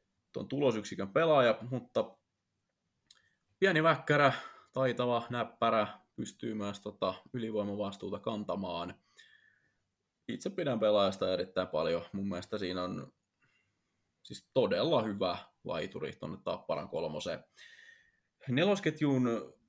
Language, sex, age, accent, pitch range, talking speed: Finnish, male, 20-39, native, 105-145 Hz, 90 wpm